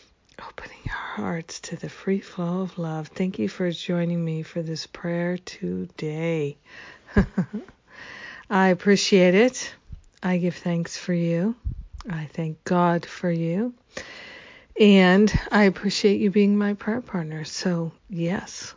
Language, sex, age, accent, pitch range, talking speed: English, female, 50-69, American, 170-200 Hz, 125 wpm